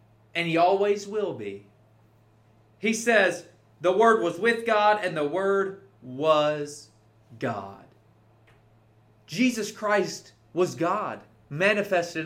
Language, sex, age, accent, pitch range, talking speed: English, male, 30-49, American, 110-185 Hz, 110 wpm